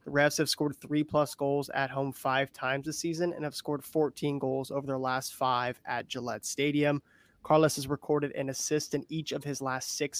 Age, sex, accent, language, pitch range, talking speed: 20-39, male, American, English, 135-150 Hz, 205 wpm